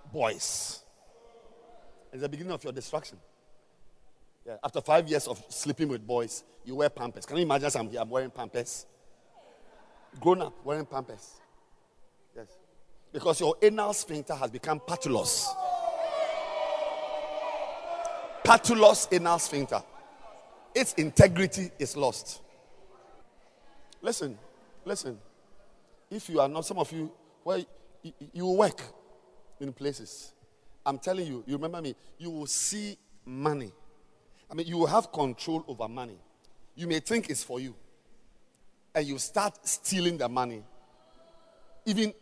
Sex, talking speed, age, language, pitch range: male, 130 wpm, 50-69, English, 140-210 Hz